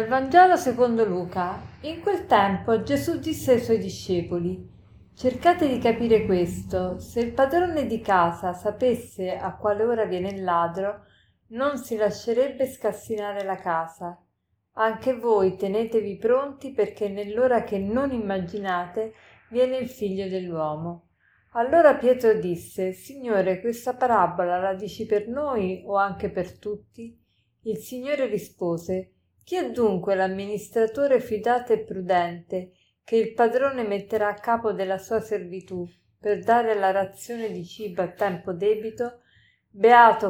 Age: 50-69